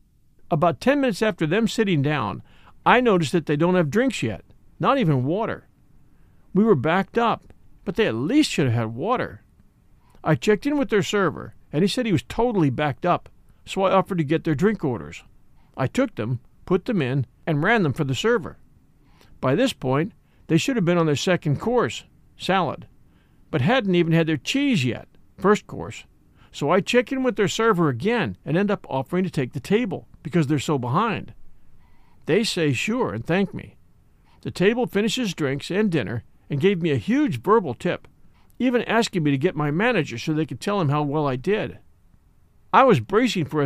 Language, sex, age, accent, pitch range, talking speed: English, male, 50-69, American, 140-210 Hz, 200 wpm